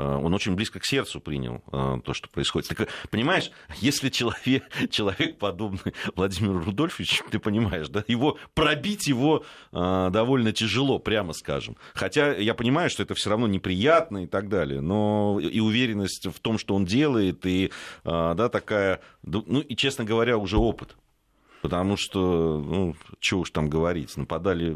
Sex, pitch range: male, 85-120 Hz